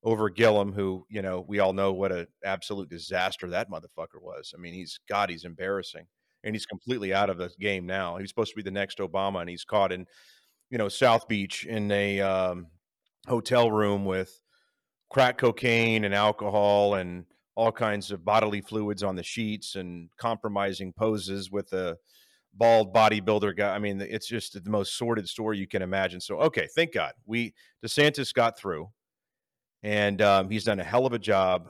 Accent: American